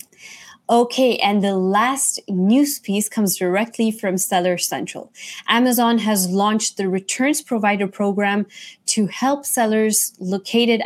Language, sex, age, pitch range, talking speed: English, female, 20-39, 190-230 Hz, 120 wpm